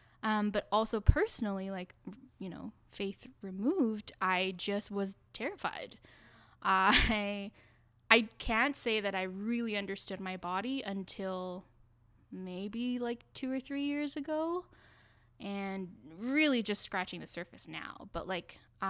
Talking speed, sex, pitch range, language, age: 130 wpm, female, 190-230 Hz, English, 10-29